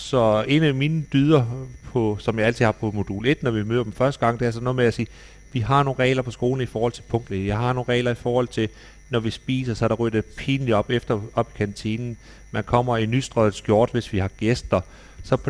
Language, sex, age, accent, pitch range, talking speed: Danish, male, 40-59, native, 110-130 Hz, 265 wpm